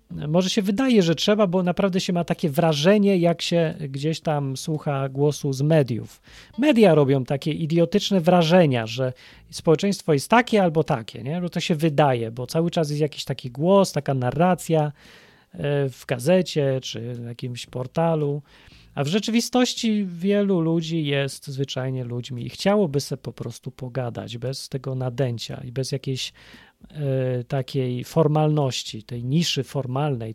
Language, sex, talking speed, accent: Polish, male, 150 wpm, native